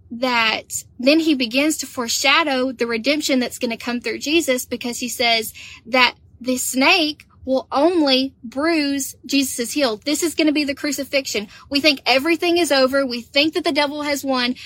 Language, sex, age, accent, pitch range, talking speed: English, female, 10-29, American, 230-285 Hz, 180 wpm